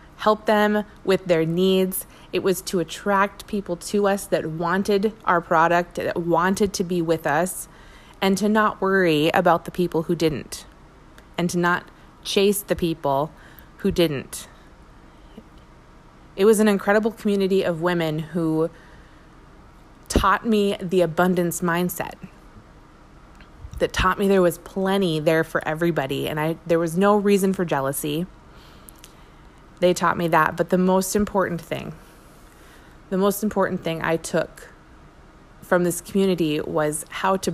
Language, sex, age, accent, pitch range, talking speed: English, female, 20-39, American, 170-200 Hz, 145 wpm